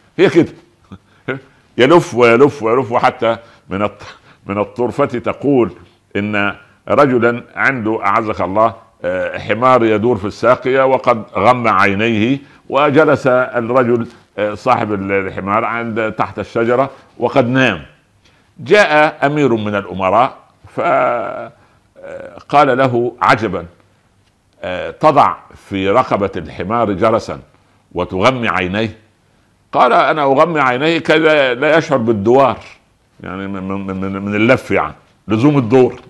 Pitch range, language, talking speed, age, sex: 105-130 Hz, Arabic, 100 wpm, 60-79, male